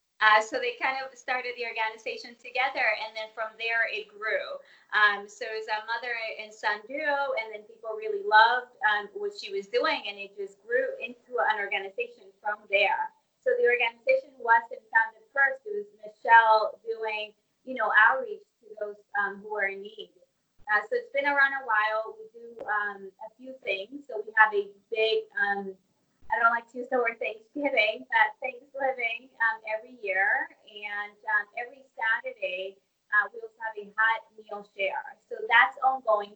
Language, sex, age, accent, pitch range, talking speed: English, female, 20-39, American, 210-265 Hz, 180 wpm